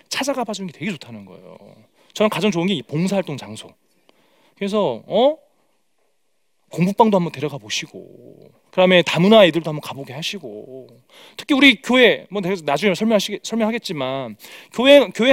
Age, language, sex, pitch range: 40-59, Korean, male, 185-275 Hz